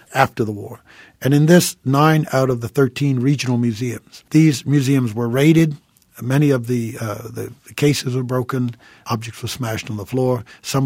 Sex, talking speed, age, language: male, 180 wpm, 50-69, English